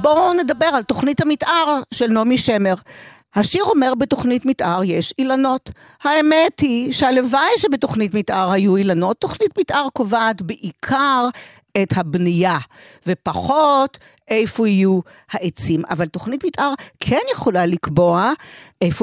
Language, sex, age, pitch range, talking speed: Hebrew, female, 50-69, 170-275 Hz, 120 wpm